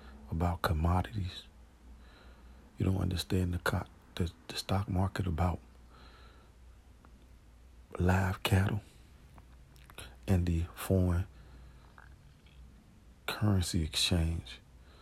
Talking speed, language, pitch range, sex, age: 70 wpm, Arabic, 65-90 Hz, male, 40-59